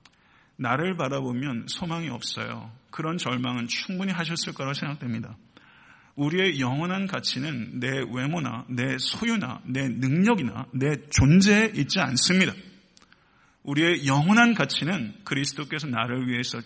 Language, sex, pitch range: Korean, male, 125-155 Hz